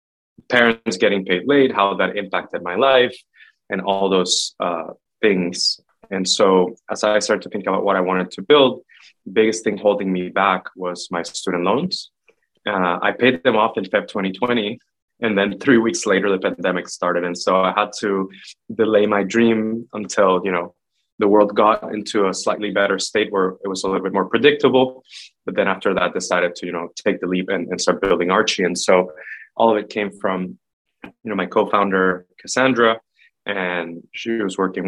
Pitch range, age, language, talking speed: 90-110 Hz, 20-39, English, 195 wpm